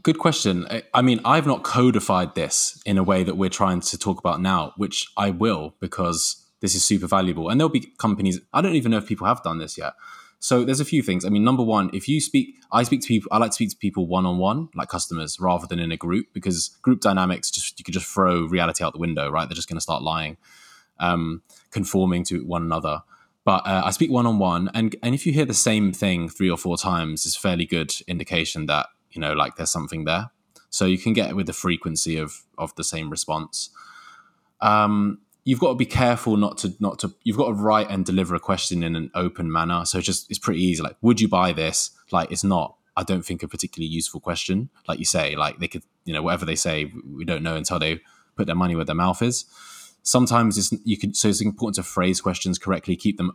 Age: 20-39